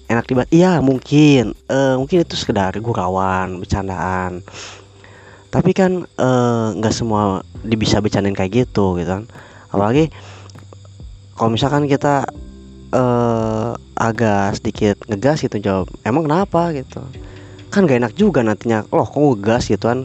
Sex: female